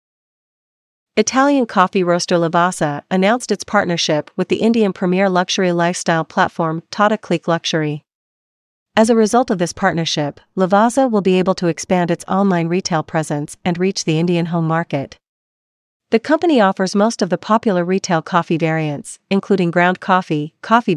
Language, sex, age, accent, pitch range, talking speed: English, female, 40-59, American, 170-210 Hz, 150 wpm